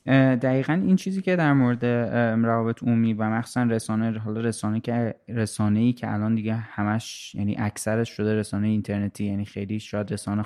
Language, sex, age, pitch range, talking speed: Persian, male, 20-39, 110-135 Hz, 160 wpm